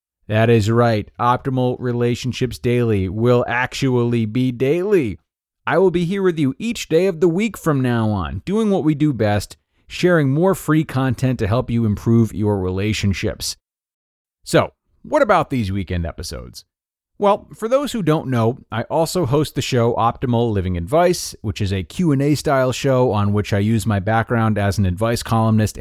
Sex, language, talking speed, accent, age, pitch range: male, English, 175 wpm, American, 30-49, 105-150 Hz